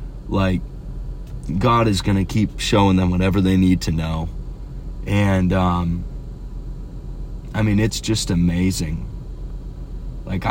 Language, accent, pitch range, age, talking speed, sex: English, American, 90-115 Hz, 30-49, 120 wpm, male